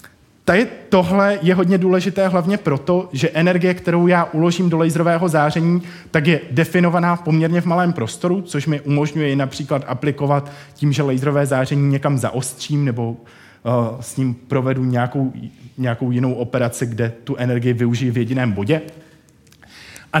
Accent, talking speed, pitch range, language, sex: native, 145 wpm, 130-170 Hz, Czech, male